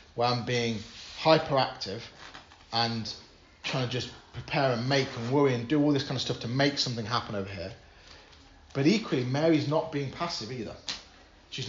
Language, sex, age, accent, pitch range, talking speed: English, male, 30-49, British, 105-135 Hz, 175 wpm